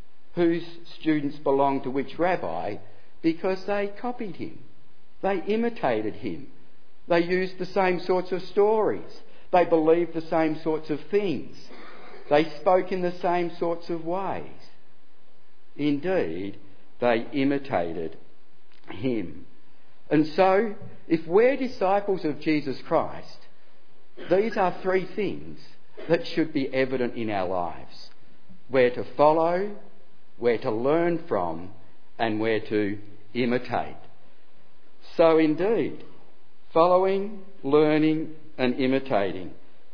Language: English